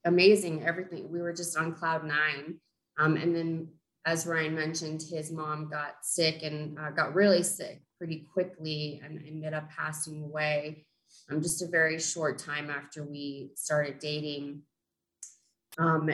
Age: 20-39